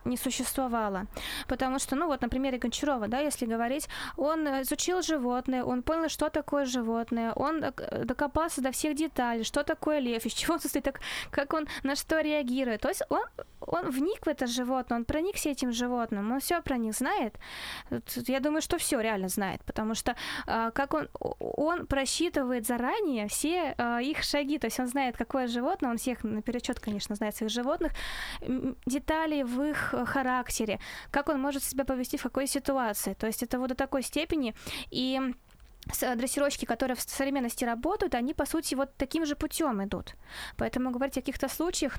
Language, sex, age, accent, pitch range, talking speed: Russian, female, 20-39, native, 240-290 Hz, 175 wpm